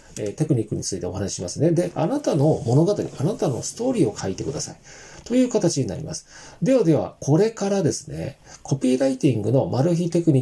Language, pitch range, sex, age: Japanese, 120-170 Hz, male, 40-59